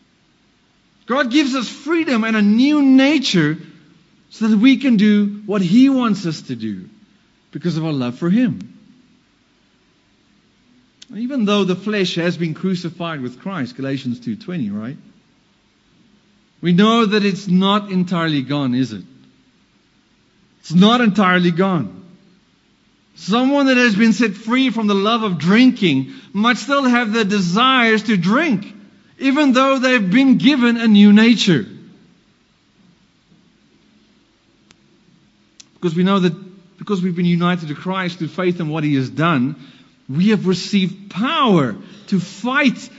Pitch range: 175-240 Hz